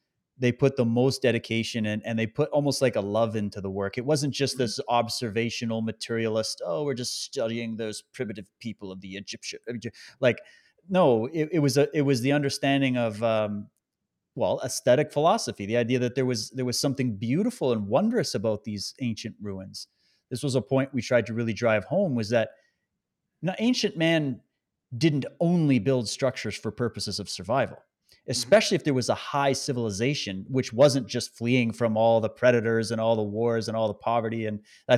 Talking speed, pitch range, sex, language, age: 185 wpm, 115-145 Hz, male, English, 30-49